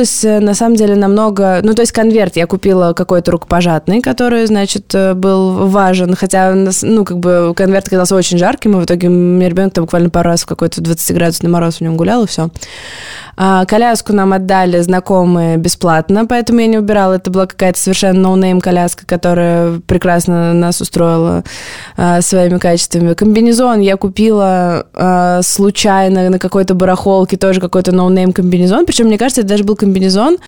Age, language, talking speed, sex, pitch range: 20-39, Russian, 165 wpm, female, 180-220 Hz